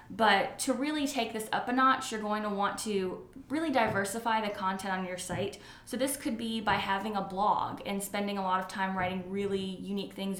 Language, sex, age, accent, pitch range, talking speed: English, female, 20-39, American, 185-220 Hz, 220 wpm